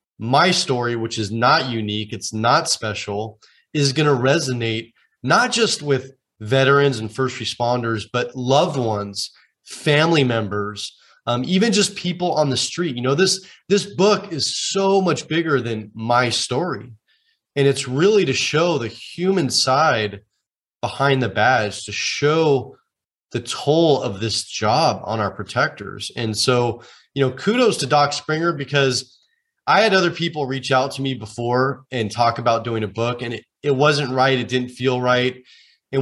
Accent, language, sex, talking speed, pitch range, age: American, English, male, 165 wpm, 115-145 Hz, 30-49